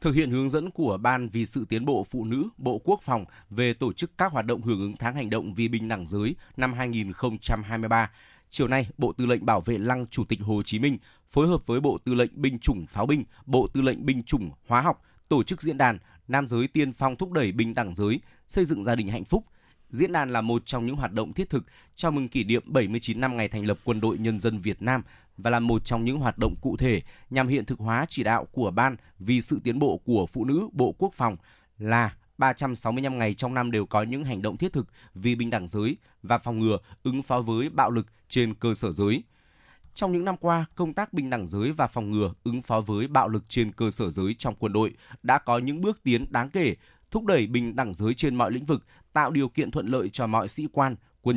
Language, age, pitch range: Vietnamese, 20-39, 110-135 Hz